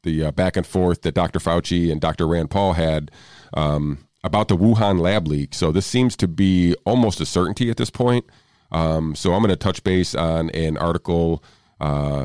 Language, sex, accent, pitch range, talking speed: English, male, American, 80-100 Hz, 200 wpm